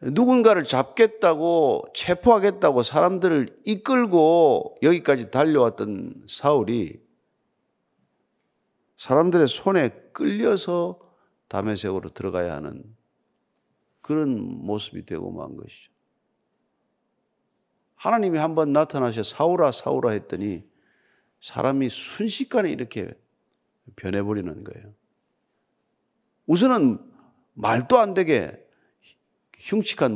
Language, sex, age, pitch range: Korean, male, 50-69, 110-175 Hz